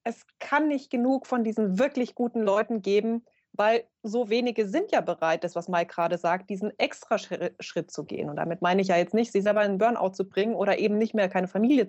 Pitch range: 185-235 Hz